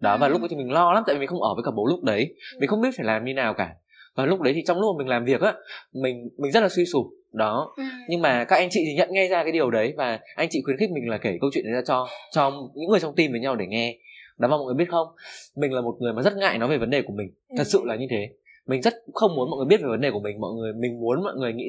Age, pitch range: 20-39, 120-175 Hz